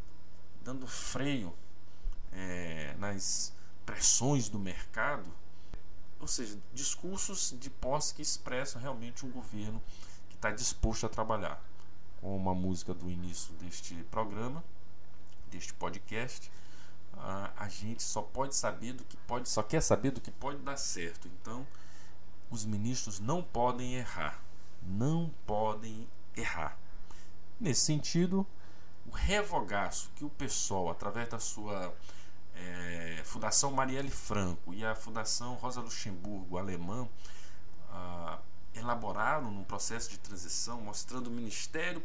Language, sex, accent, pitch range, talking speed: Portuguese, male, Brazilian, 90-120 Hz, 120 wpm